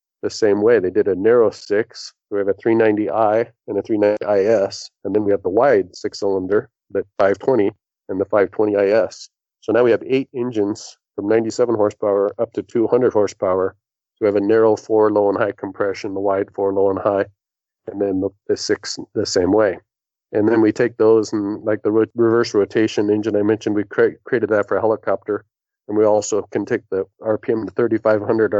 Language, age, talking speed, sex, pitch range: English, 40-59, 225 wpm, male, 100-115 Hz